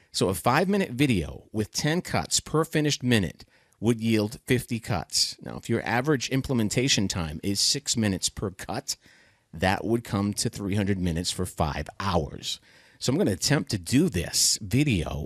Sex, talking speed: male, 170 wpm